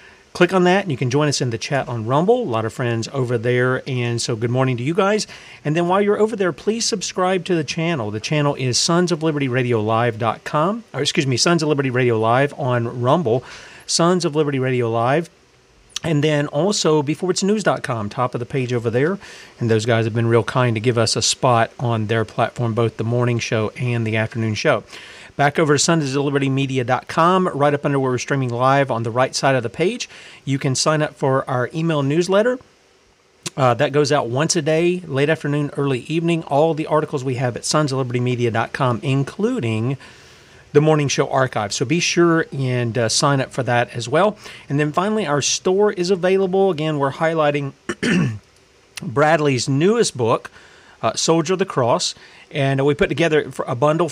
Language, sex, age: English, male, 40-59